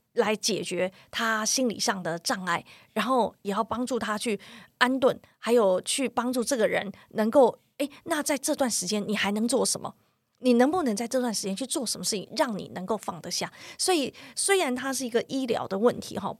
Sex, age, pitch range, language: female, 30-49, 205-255 Hz, Chinese